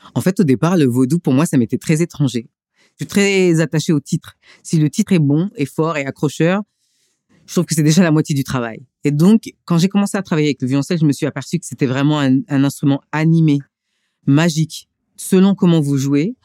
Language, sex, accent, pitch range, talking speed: French, female, French, 135-175 Hz, 225 wpm